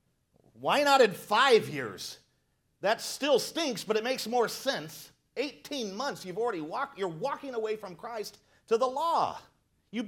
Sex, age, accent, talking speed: male, 40-59, American, 180 wpm